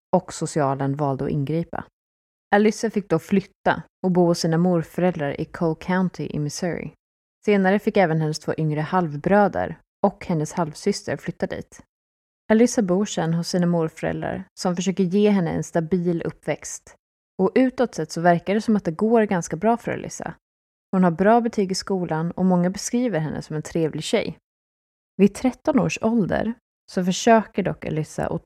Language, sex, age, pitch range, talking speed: Swedish, female, 20-39, 155-195 Hz, 170 wpm